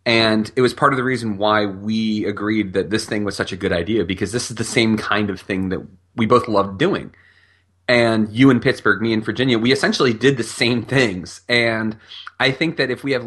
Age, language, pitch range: 30-49, English, 100-120 Hz